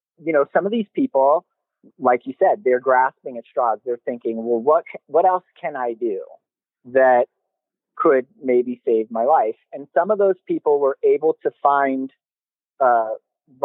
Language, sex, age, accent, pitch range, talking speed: English, male, 30-49, American, 125-195 Hz, 165 wpm